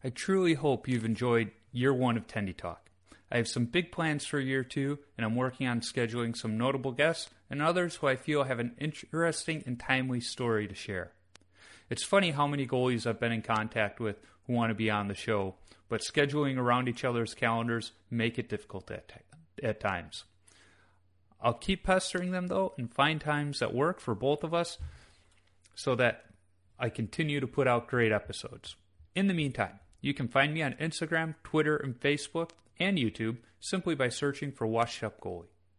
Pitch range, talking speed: 105-145 Hz, 190 wpm